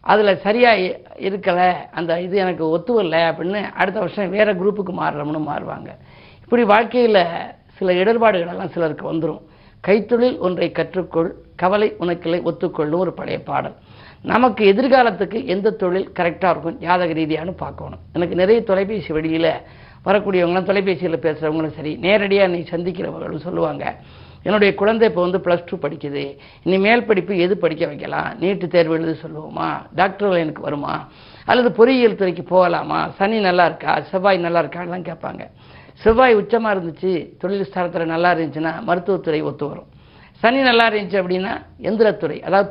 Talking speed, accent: 130 wpm, native